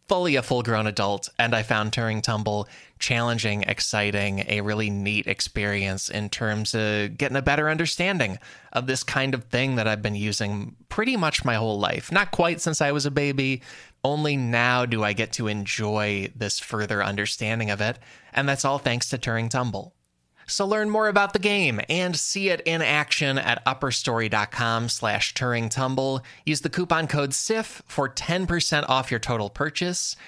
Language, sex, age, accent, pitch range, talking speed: English, male, 20-39, American, 110-150 Hz, 175 wpm